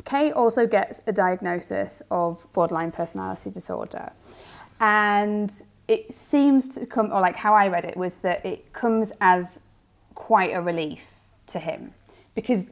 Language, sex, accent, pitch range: English, female, British, 165-220 Hz